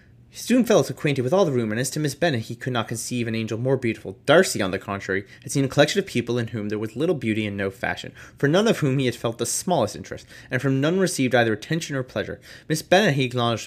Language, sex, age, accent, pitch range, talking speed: English, male, 20-39, American, 110-135 Hz, 270 wpm